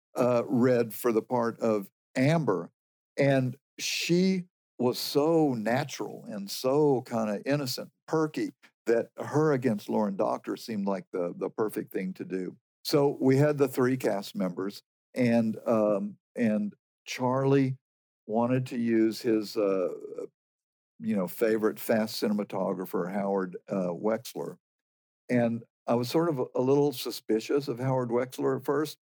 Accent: American